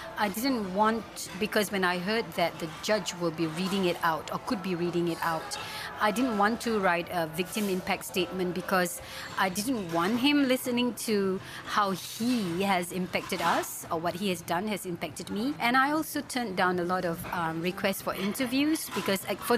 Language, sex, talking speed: English, female, 195 wpm